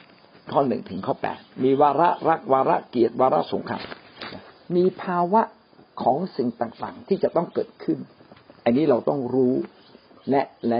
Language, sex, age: Thai, male, 60-79